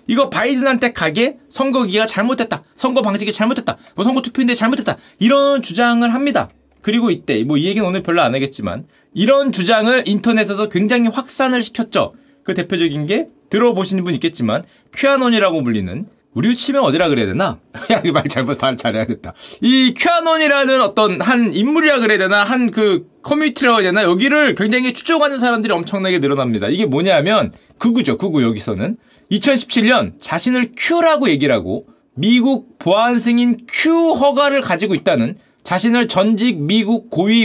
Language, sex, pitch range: Korean, male, 205-265 Hz